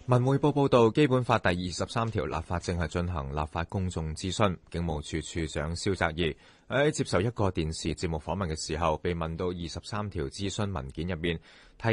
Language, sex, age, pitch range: Chinese, male, 30-49, 75-100 Hz